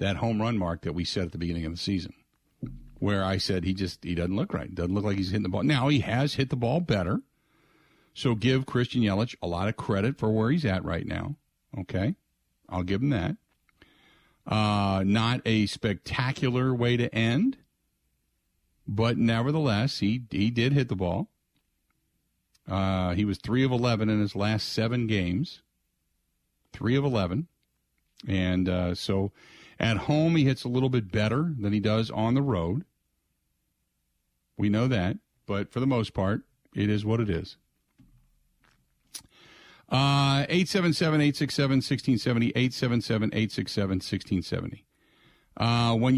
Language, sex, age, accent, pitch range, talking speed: English, male, 50-69, American, 95-130 Hz, 155 wpm